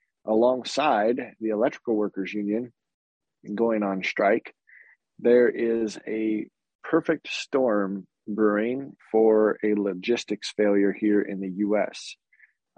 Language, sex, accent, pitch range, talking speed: English, male, American, 105-115 Hz, 110 wpm